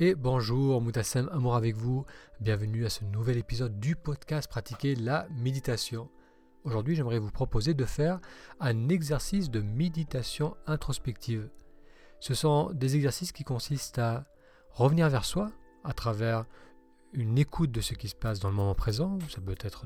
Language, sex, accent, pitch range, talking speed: French, male, French, 115-155 Hz, 160 wpm